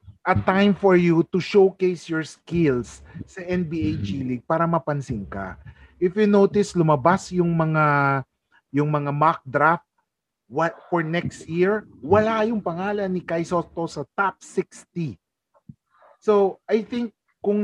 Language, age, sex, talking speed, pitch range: English, 30-49, male, 145 wpm, 145-180 Hz